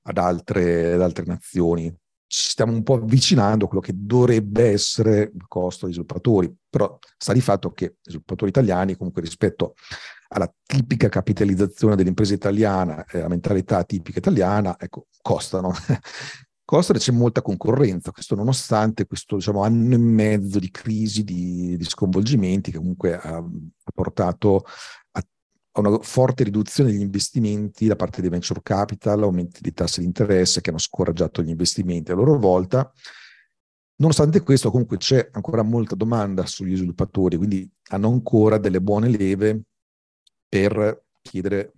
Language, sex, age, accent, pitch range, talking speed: Italian, male, 40-59, native, 90-110 Hz, 150 wpm